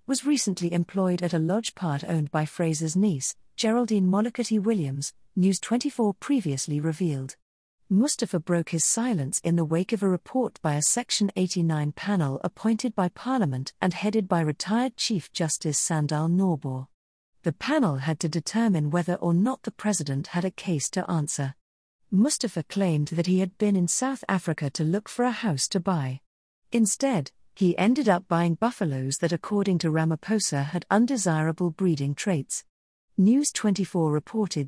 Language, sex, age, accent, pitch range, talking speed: English, female, 40-59, British, 155-210 Hz, 160 wpm